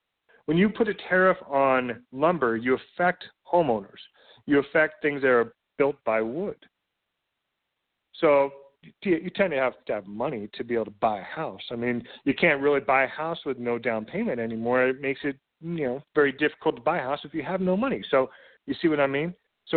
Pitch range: 125-165 Hz